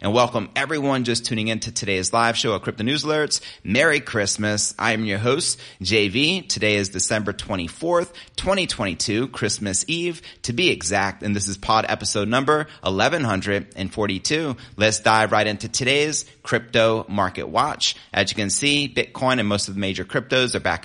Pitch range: 100-130 Hz